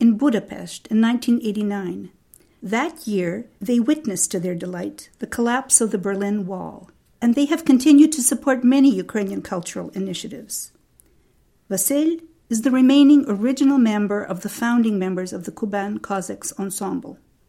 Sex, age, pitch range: female, 50-69, 190-255 Hz